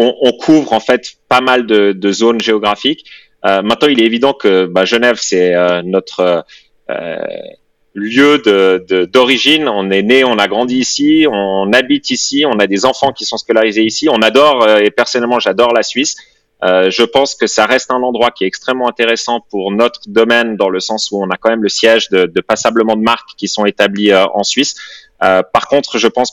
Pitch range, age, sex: 100-120 Hz, 30-49, male